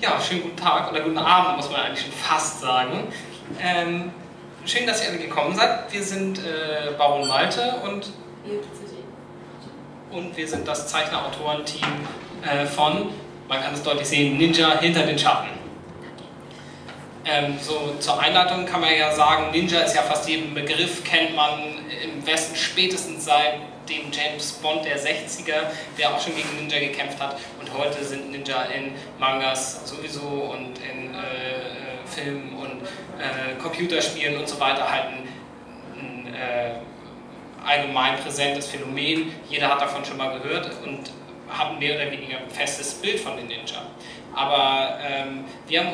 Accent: German